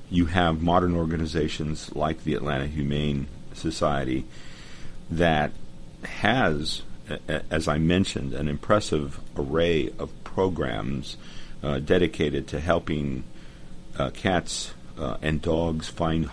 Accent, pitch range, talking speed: American, 75-85 Hz, 115 wpm